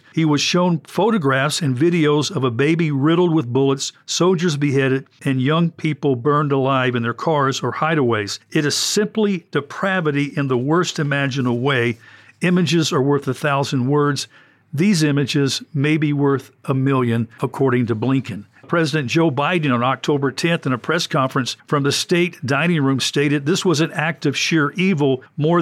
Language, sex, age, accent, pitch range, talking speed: English, male, 50-69, American, 135-175 Hz, 170 wpm